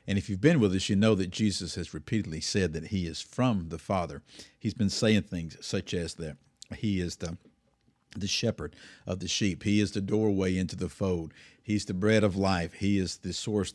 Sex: male